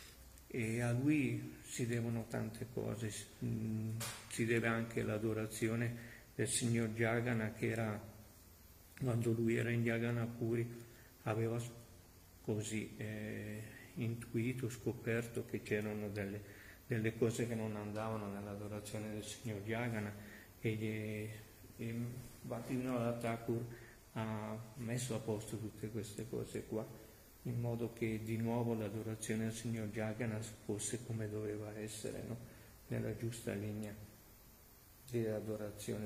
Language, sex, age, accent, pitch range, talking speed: Italian, male, 50-69, native, 105-120 Hz, 115 wpm